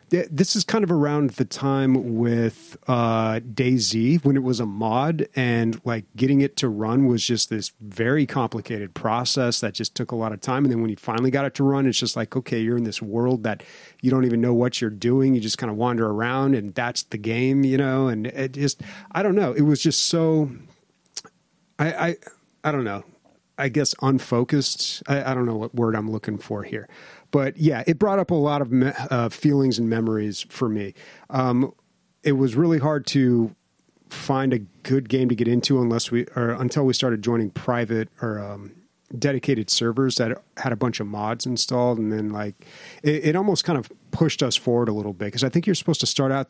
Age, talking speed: 30-49, 215 wpm